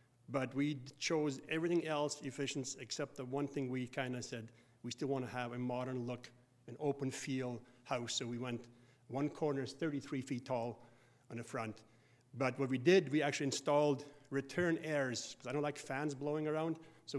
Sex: male